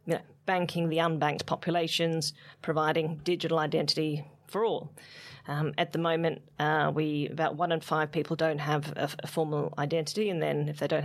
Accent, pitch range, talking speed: Australian, 155-175 Hz, 185 wpm